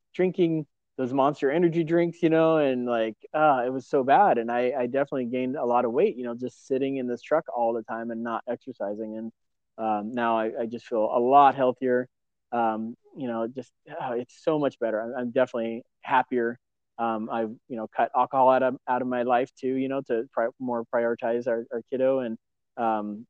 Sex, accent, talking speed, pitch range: male, American, 210 wpm, 115-135 Hz